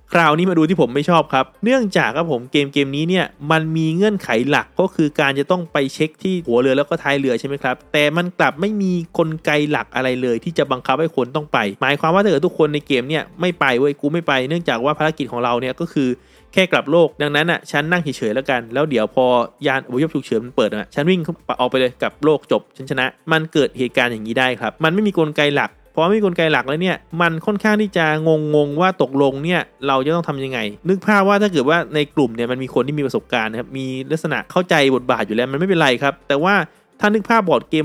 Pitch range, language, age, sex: 135-175 Hz, Thai, 20-39, male